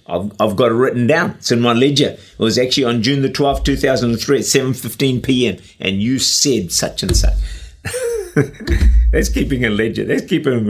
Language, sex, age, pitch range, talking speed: English, male, 50-69, 110-150 Hz, 180 wpm